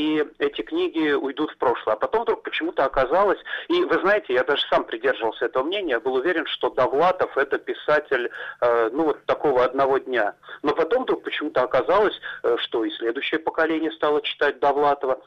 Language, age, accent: Russian, 40-59, native